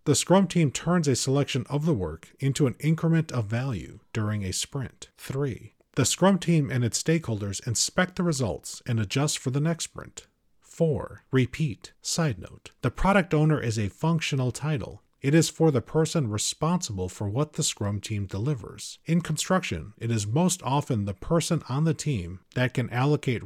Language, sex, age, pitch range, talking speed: English, male, 40-59, 110-155 Hz, 180 wpm